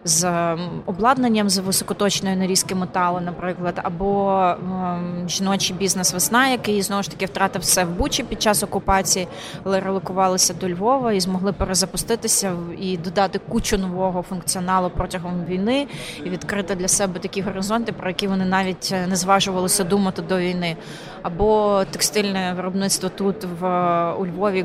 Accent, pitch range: native, 175-200 Hz